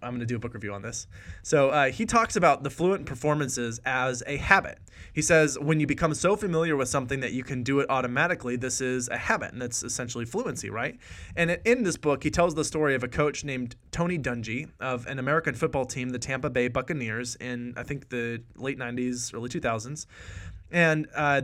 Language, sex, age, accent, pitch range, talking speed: English, male, 20-39, American, 120-160 Hz, 215 wpm